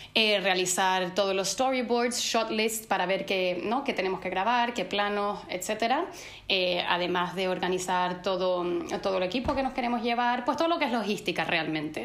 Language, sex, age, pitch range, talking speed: Spanish, female, 20-39, 185-225 Hz, 180 wpm